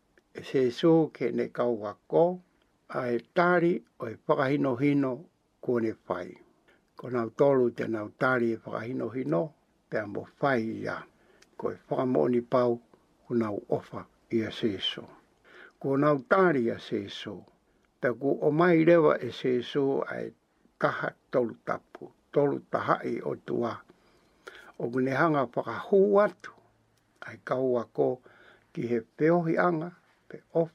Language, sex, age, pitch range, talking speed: English, male, 60-79, 120-155 Hz, 45 wpm